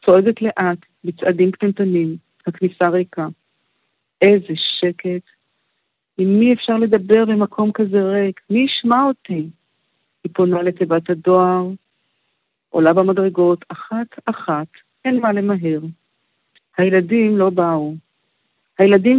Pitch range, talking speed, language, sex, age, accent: 175-210 Hz, 100 wpm, Hebrew, female, 50-69, native